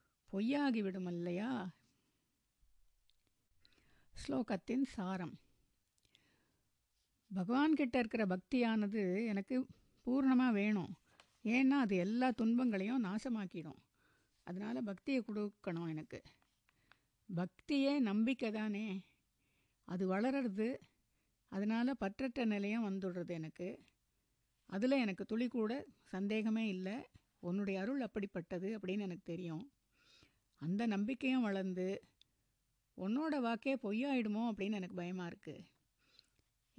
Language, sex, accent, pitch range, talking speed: Tamil, female, native, 180-235 Hz, 85 wpm